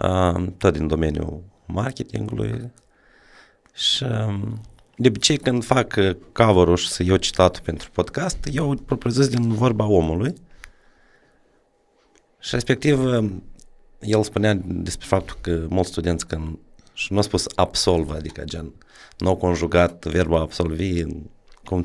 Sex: male